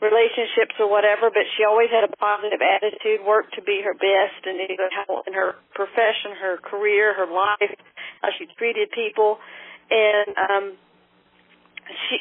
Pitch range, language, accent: 205-265 Hz, English, American